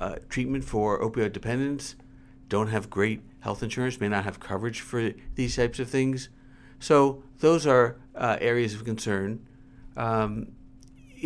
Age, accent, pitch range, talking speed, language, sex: 50-69, American, 110-130 Hz, 145 wpm, English, male